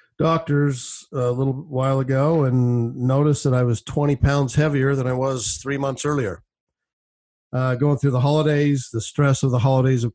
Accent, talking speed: American, 175 wpm